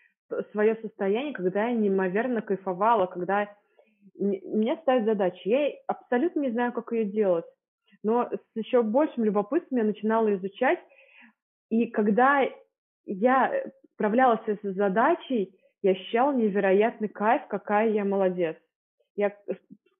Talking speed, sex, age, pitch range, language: 120 wpm, female, 20-39, 195-230 Hz, Russian